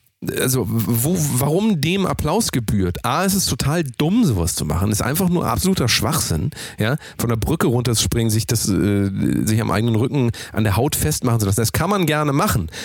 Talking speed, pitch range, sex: 200 wpm, 110-155 Hz, male